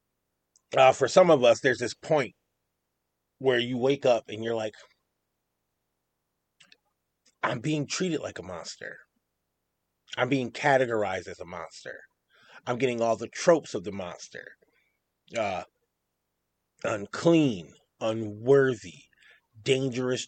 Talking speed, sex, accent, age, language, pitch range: 115 wpm, male, American, 30-49, English, 100-135 Hz